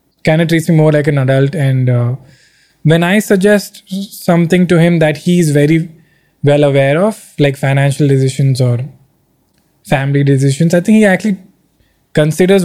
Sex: male